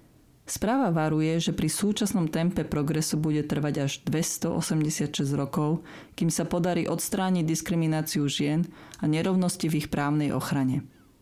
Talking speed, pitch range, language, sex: 130 wpm, 155-185 Hz, Slovak, female